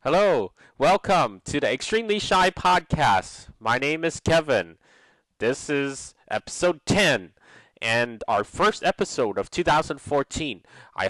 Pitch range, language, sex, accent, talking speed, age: 115-160 Hz, English, male, American, 120 wpm, 30-49